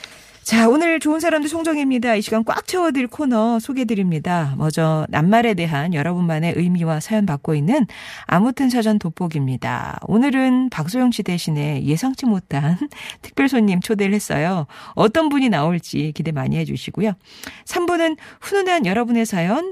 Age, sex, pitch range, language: 40-59, female, 155-245 Hz, Korean